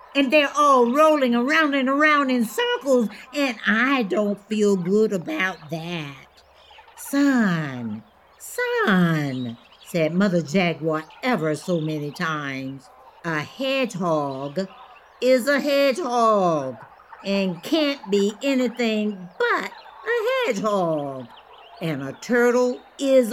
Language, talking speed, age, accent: English, 105 wpm, 60-79, American